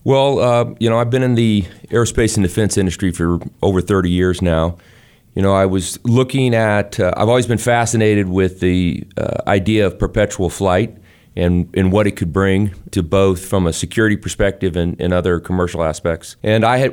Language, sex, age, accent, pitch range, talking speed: English, male, 30-49, American, 90-105 Hz, 190 wpm